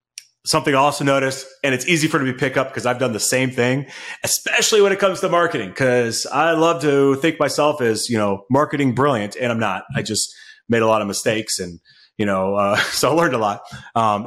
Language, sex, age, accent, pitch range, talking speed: English, male, 30-49, American, 115-185 Hz, 230 wpm